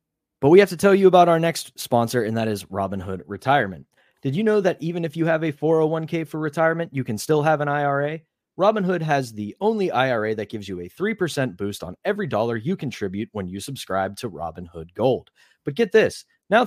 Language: English